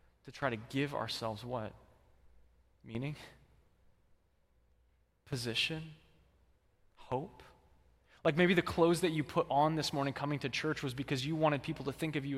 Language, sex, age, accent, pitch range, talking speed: English, male, 20-39, American, 110-150 Hz, 150 wpm